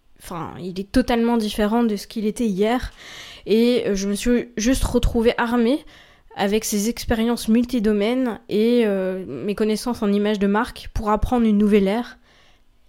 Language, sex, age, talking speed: English, female, 20-39, 160 wpm